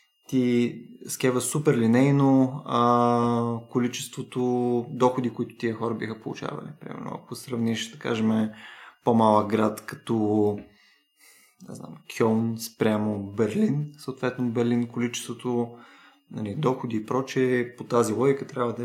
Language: Bulgarian